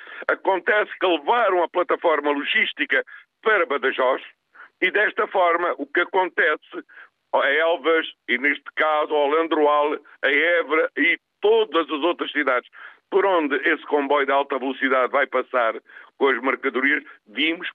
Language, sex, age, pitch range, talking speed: Portuguese, male, 50-69, 145-235 Hz, 140 wpm